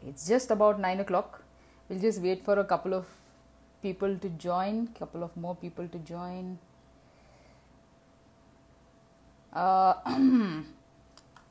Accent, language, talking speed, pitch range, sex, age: Indian, English, 115 wpm, 160-200 Hz, female, 30-49